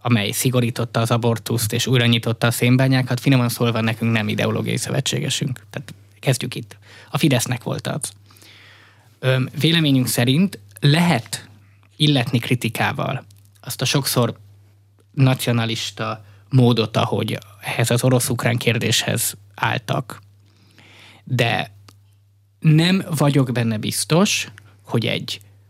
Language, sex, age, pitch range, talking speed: Hungarian, male, 20-39, 105-130 Hz, 105 wpm